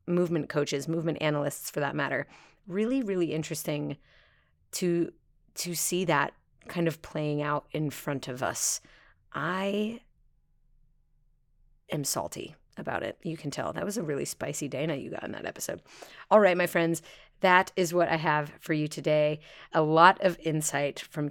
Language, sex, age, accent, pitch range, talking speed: English, female, 30-49, American, 150-175 Hz, 165 wpm